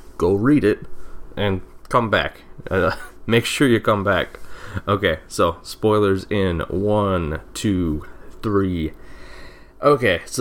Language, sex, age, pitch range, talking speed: English, male, 20-39, 85-105 Hz, 120 wpm